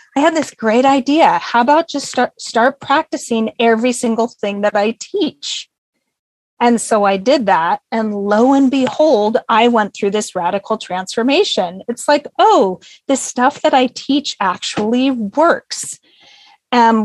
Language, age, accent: English, 30-49, American